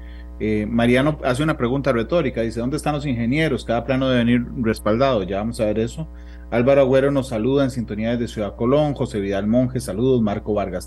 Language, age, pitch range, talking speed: Spanish, 30-49, 105-135 Hz, 200 wpm